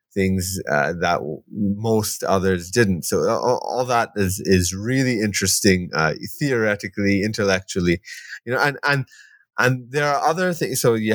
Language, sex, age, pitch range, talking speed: English, male, 30-49, 90-115 Hz, 150 wpm